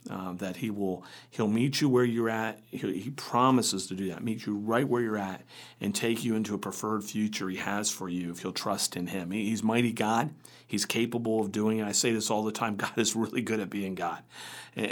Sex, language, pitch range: male, English, 95-115 Hz